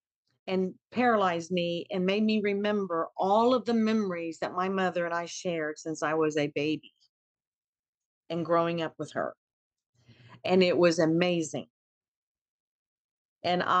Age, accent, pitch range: 50-69, American, 175-220 Hz